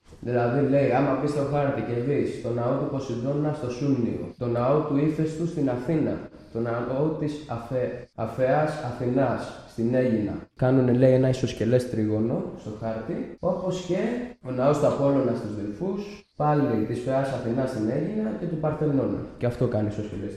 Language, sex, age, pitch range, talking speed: Greek, male, 20-39, 120-165 Hz, 165 wpm